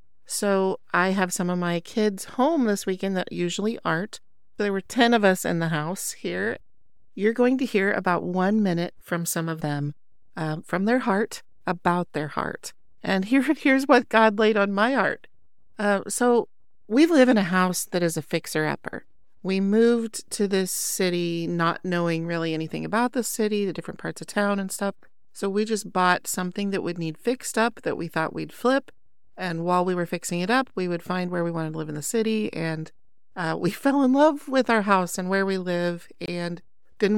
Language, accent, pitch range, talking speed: English, American, 175-230 Hz, 205 wpm